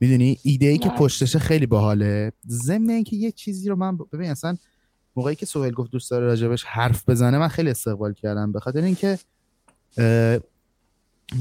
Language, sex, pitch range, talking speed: Persian, male, 110-150 Hz, 160 wpm